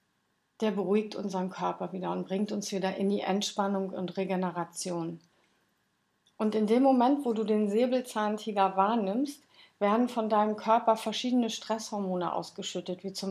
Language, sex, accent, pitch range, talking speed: German, female, German, 185-225 Hz, 145 wpm